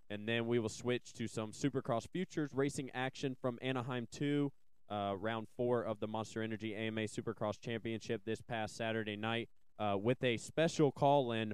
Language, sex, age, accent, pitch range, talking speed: English, male, 20-39, American, 110-125 Hz, 165 wpm